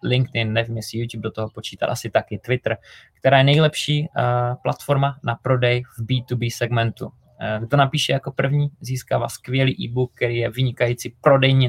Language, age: Czech, 20-39